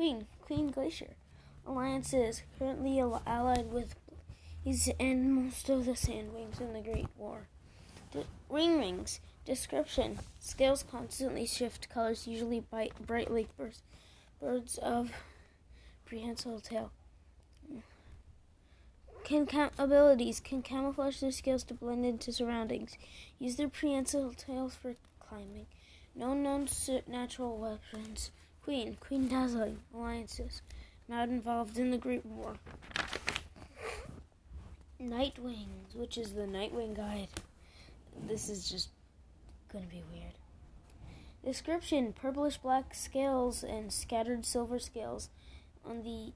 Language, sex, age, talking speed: English, female, 20-39, 115 wpm